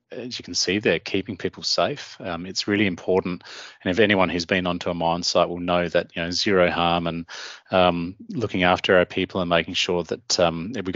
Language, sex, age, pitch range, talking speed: English, male, 30-49, 90-100 Hz, 225 wpm